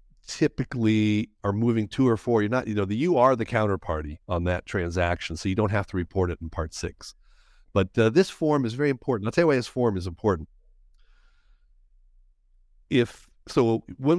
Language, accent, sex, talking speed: English, American, male, 195 wpm